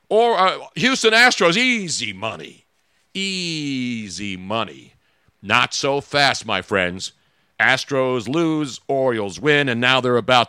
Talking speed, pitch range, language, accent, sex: 120 wpm, 105-155 Hz, English, American, male